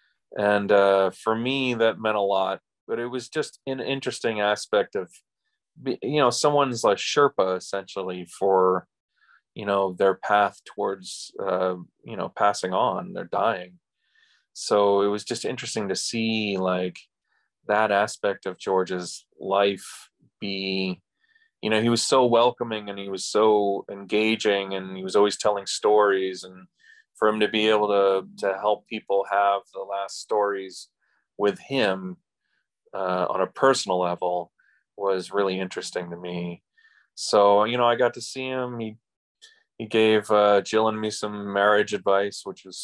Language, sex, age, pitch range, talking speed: English, male, 30-49, 95-110 Hz, 155 wpm